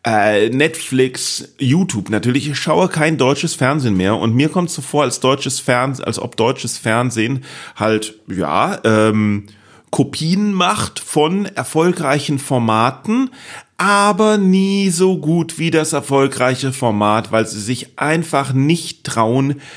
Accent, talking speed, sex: German, 135 wpm, male